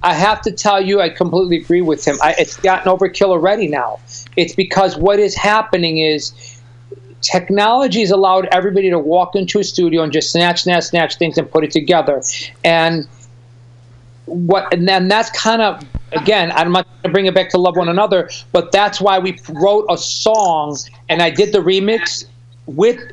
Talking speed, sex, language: 185 wpm, male, English